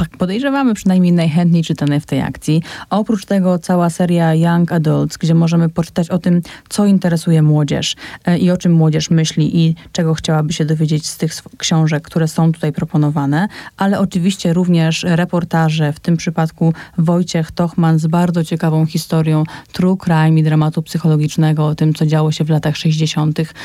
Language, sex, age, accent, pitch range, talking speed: Polish, female, 30-49, native, 155-170 Hz, 165 wpm